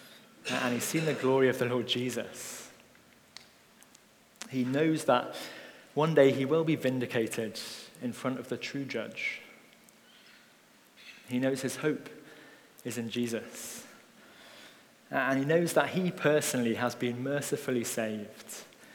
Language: English